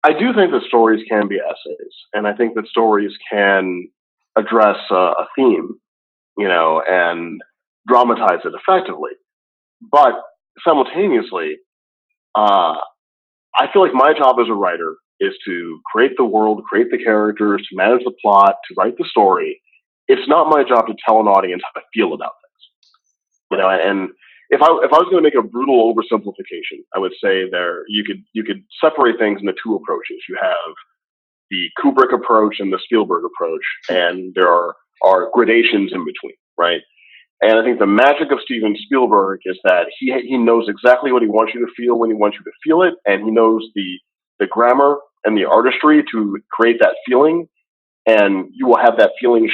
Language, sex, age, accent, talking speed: English, male, 30-49, American, 190 wpm